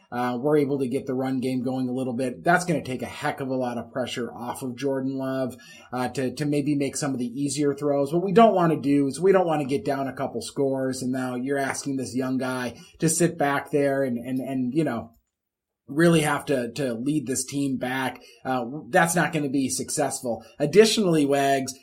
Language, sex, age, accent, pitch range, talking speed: English, male, 30-49, American, 130-155 Hz, 235 wpm